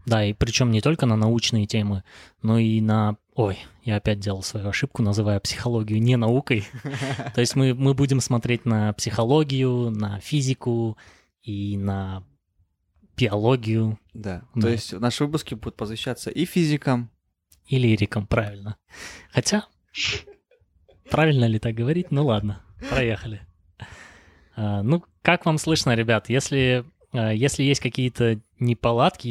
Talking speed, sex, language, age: 130 wpm, male, Russian, 20-39